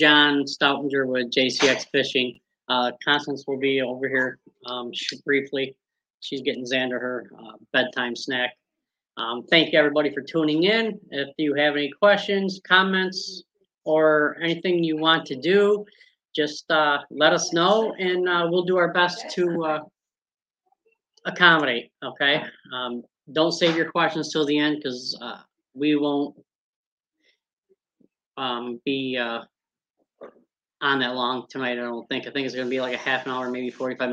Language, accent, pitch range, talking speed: English, American, 130-160 Hz, 155 wpm